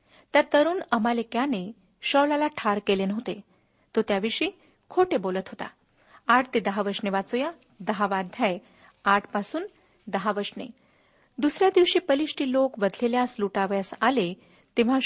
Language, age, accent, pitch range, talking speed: Marathi, 50-69, native, 205-260 Hz, 125 wpm